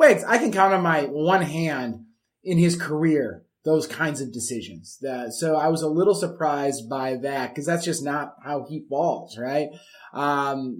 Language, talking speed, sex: English, 180 wpm, male